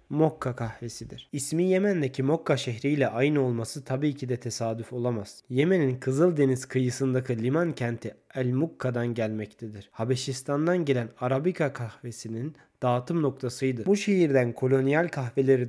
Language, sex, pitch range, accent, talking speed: Turkish, male, 125-145 Hz, native, 120 wpm